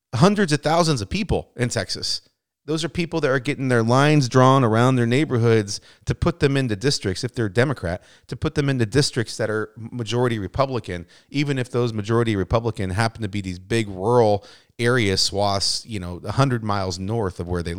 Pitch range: 100-140 Hz